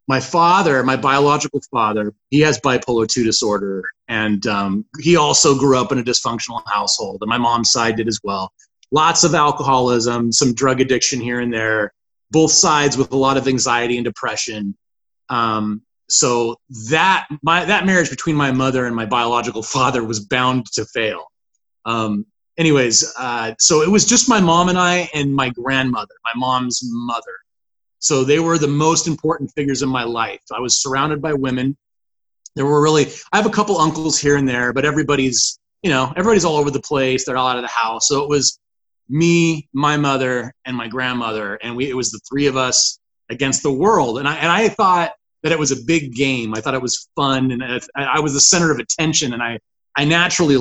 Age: 30-49